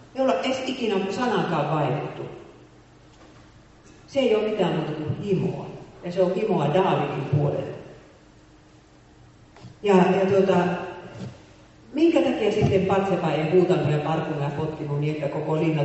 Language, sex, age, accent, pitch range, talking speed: Finnish, female, 40-59, native, 150-190 Hz, 125 wpm